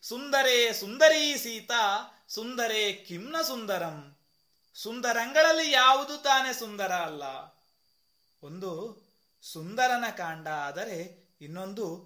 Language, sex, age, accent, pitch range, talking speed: Kannada, male, 30-49, native, 175-270 Hz, 80 wpm